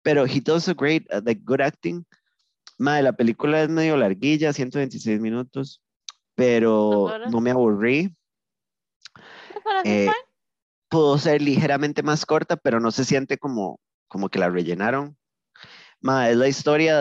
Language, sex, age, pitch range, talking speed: Spanish, male, 30-49, 115-155 Hz, 140 wpm